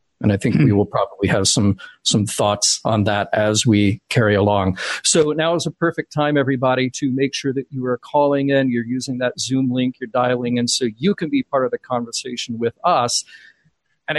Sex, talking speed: male, 210 wpm